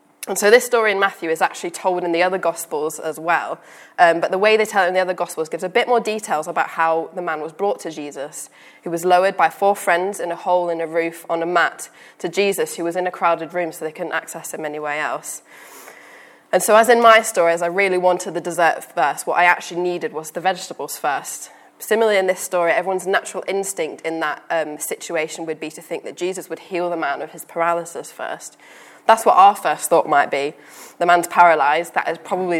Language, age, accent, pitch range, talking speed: English, 10-29, British, 160-190 Hz, 235 wpm